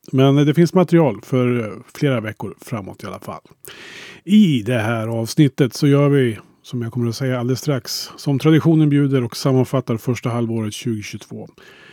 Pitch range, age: 120-145 Hz, 30-49